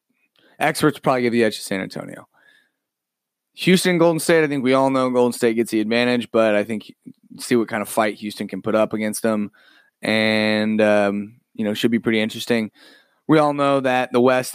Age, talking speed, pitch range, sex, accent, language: 30-49, 205 wpm, 115-155 Hz, male, American, English